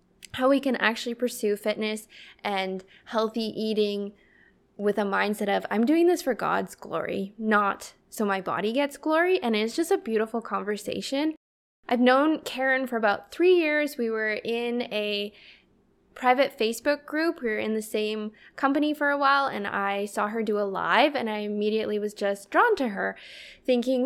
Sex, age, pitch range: female, 10-29, 210-275 Hz